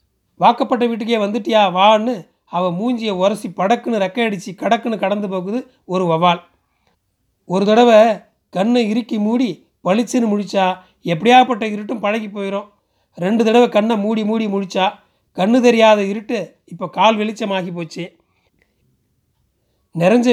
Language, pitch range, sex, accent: Tamil, 185-225 Hz, male, native